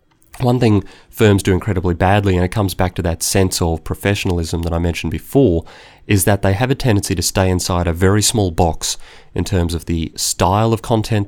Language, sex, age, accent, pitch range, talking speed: English, male, 30-49, Australian, 85-100 Hz, 205 wpm